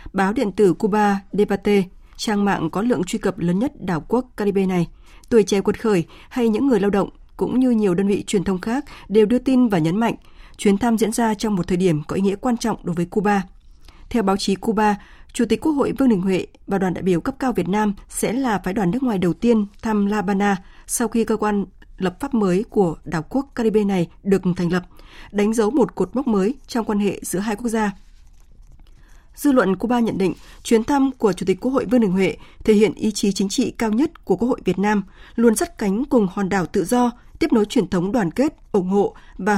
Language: Vietnamese